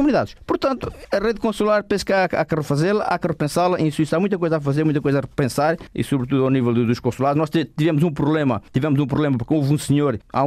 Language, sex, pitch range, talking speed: Portuguese, male, 125-165 Hz, 245 wpm